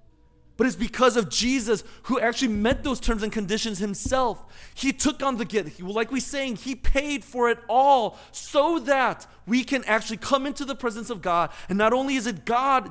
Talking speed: 200 wpm